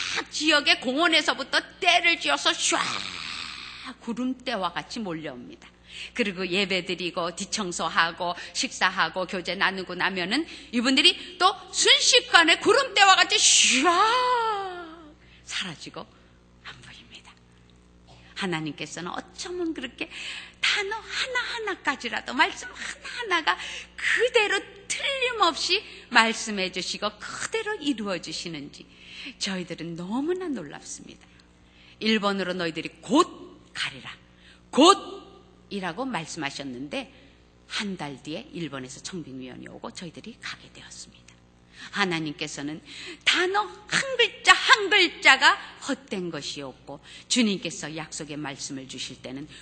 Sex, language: female, Korean